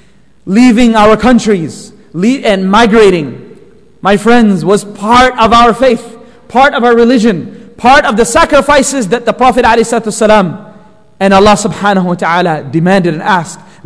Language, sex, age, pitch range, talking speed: English, male, 30-49, 195-250 Hz, 115 wpm